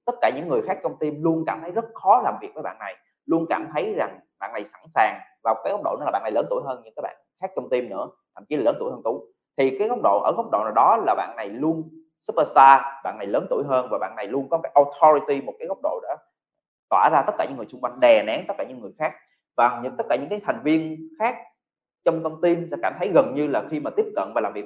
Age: 20-39